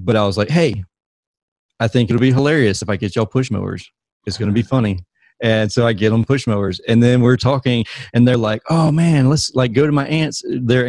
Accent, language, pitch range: American, English, 105-125 Hz